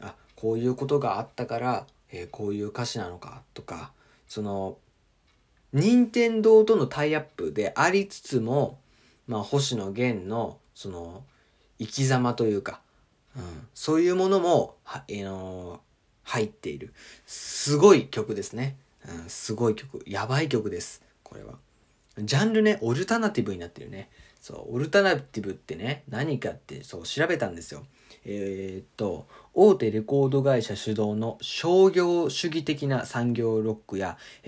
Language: Japanese